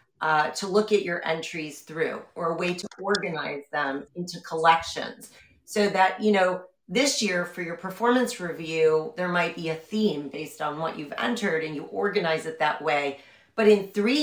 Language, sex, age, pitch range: English, female, 40-59, 160-205 Hz